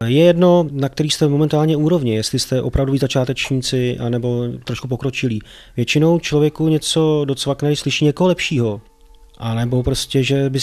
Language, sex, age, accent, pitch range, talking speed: Czech, male, 30-49, native, 120-140 Hz, 150 wpm